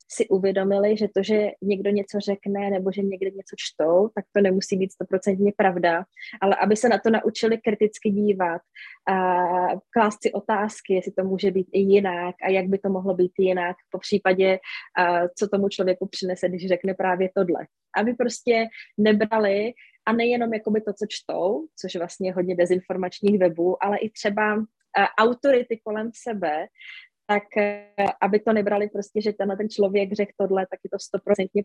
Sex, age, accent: female, 20-39, native